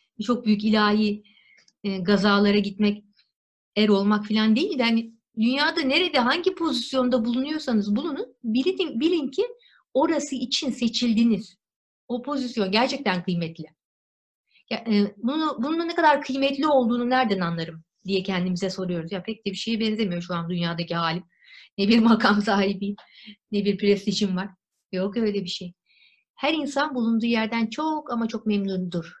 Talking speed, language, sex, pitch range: 145 wpm, Turkish, female, 195-250 Hz